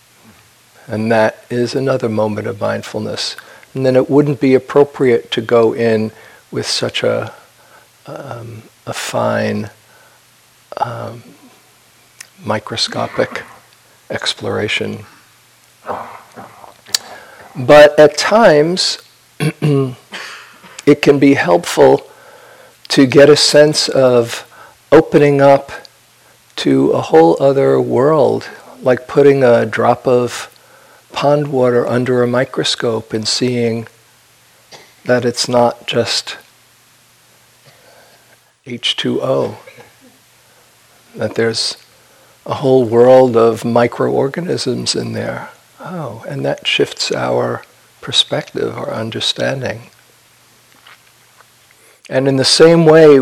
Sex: male